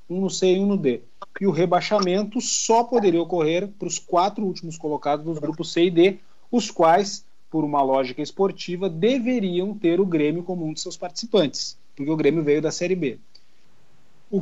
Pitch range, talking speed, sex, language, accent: 155-200 Hz, 190 wpm, male, Portuguese, Brazilian